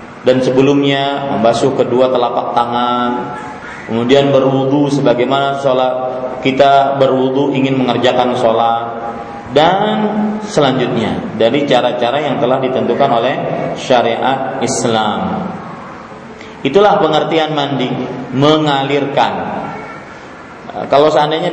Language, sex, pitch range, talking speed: Malay, male, 130-165 Hz, 85 wpm